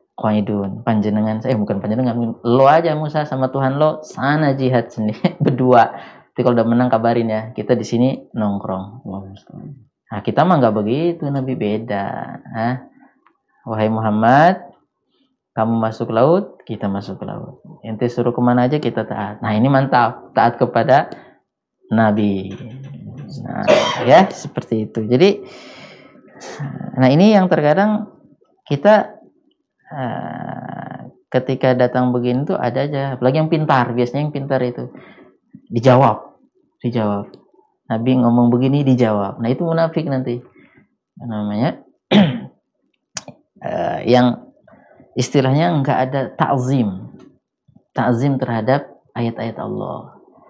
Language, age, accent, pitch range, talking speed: Indonesian, 20-39, native, 110-140 Hz, 110 wpm